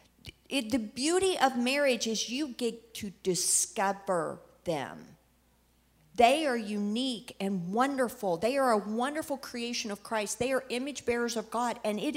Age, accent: 50-69, American